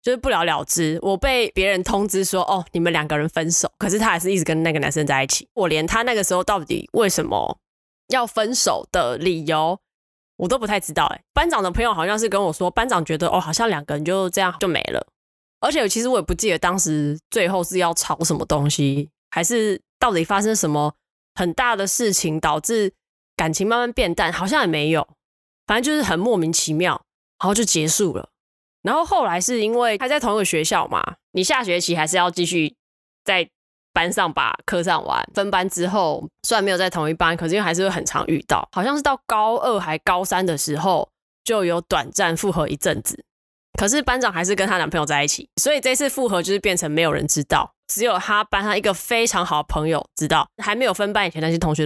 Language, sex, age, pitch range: Chinese, female, 20-39, 160-210 Hz